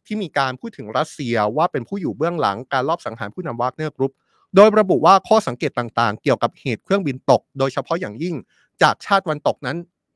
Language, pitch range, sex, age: Thai, 120-160 Hz, male, 20-39